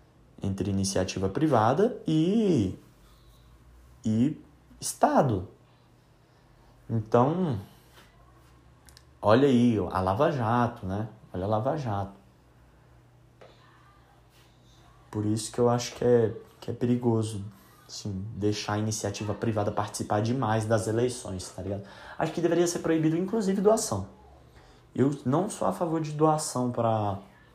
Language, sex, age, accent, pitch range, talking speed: Portuguese, male, 20-39, Brazilian, 100-125 Hz, 115 wpm